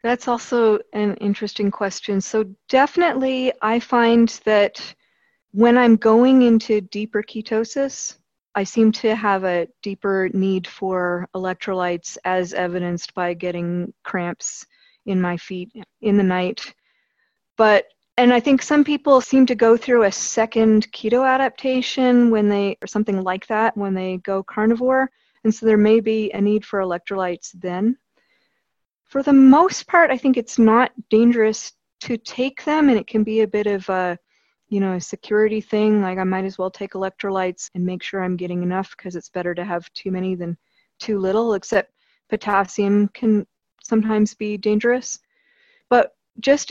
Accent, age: American, 40-59